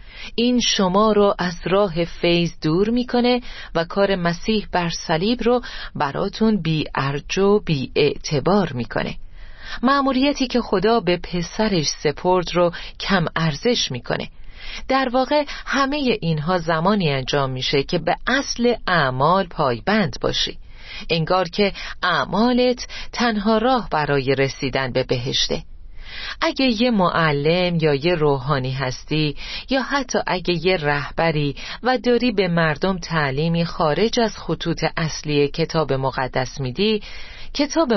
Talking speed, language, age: 125 wpm, Persian, 40-59